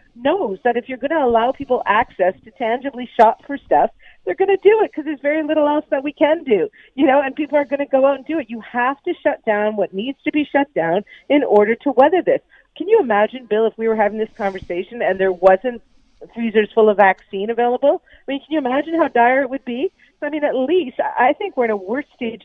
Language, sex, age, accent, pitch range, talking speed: English, female, 40-59, American, 220-275 Hz, 255 wpm